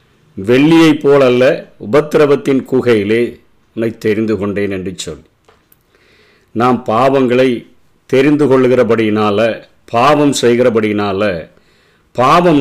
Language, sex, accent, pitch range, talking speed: Tamil, male, native, 115-145 Hz, 75 wpm